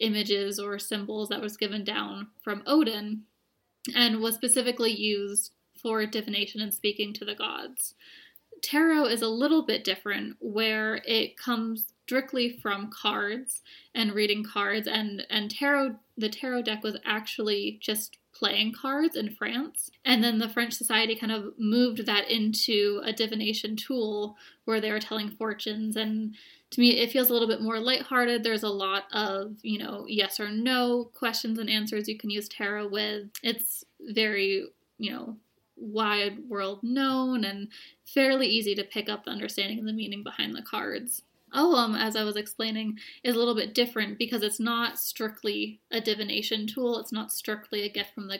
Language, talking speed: English, 170 wpm